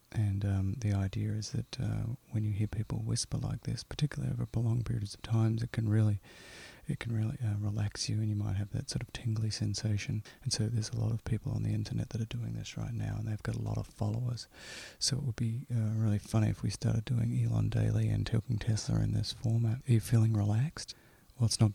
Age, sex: 30-49, male